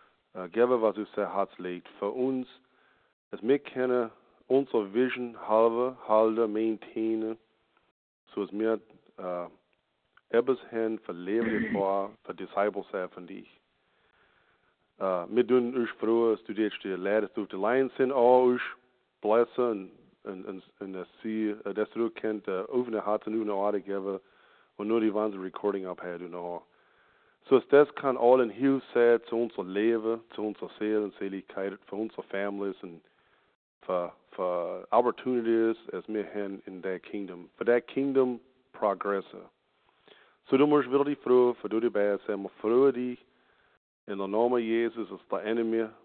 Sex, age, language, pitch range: male, 50-69, English, 100-120 Hz